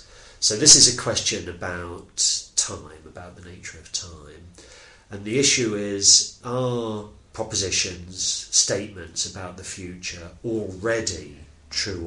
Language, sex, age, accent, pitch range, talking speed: English, male, 40-59, British, 85-105 Hz, 120 wpm